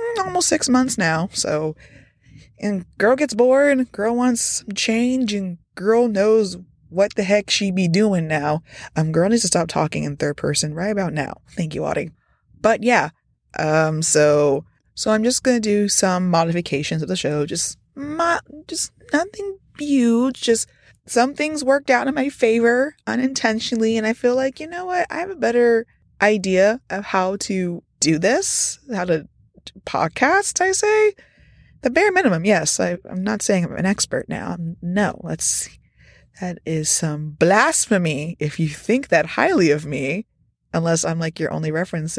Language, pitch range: English, 165-260 Hz